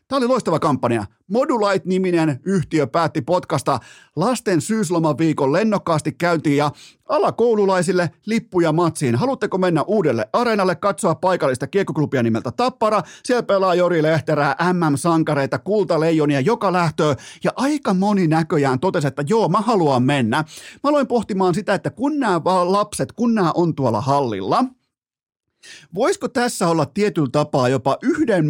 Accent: native